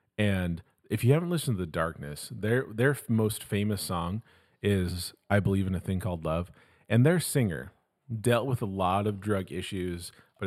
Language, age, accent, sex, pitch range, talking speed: English, 30-49, American, male, 100-130 Hz, 185 wpm